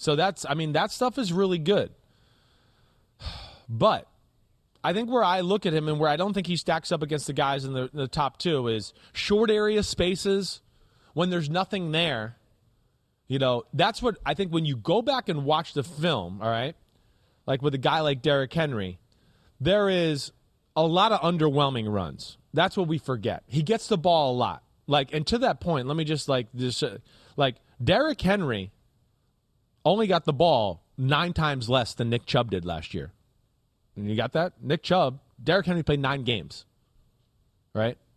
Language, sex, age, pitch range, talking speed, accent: English, male, 30-49, 120-165 Hz, 185 wpm, American